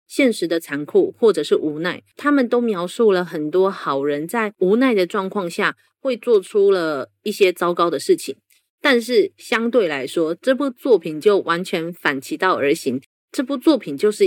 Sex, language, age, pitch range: female, Chinese, 30-49, 175-275 Hz